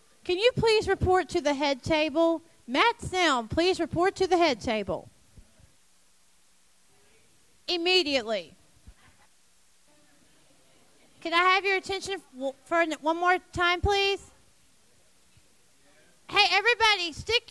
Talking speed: 105 wpm